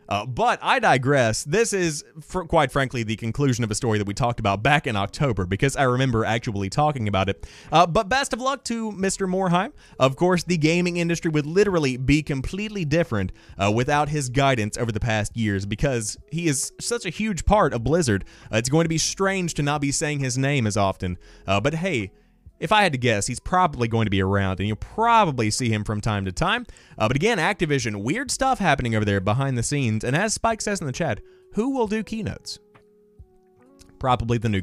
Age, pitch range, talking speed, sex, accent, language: 30-49, 115-180 Hz, 215 wpm, male, American, English